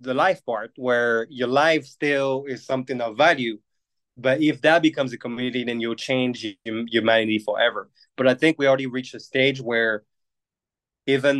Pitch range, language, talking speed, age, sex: 115-130 Hz, English, 175 wpm, 20-39, male